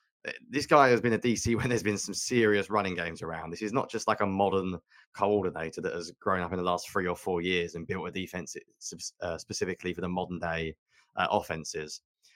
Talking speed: 210 wpm